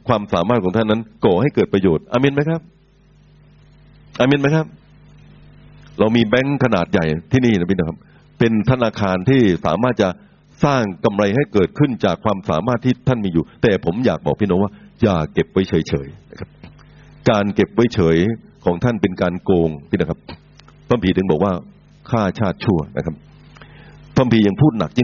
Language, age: Thai, 60-79